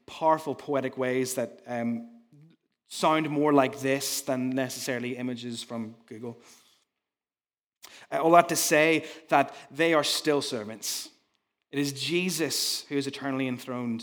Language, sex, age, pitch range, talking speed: English, male, 20-39, 130-160 Hz, 130 wpm